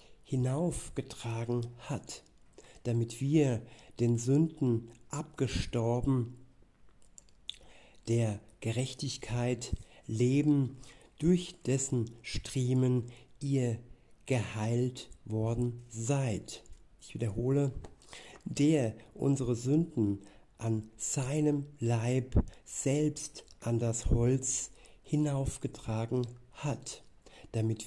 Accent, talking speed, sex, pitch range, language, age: German, 70 wpm, male, 115-135 Hz, German, 60-79